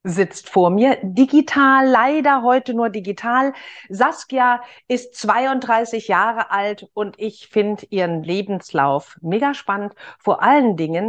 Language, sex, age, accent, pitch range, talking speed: German, female, 50-69, German, 185-250 Hz, 125 wpm